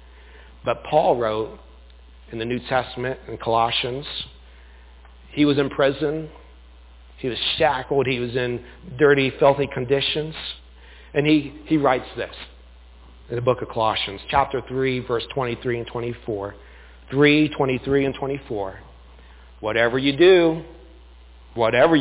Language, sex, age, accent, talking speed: English, male, 40-59, American, 125 wpm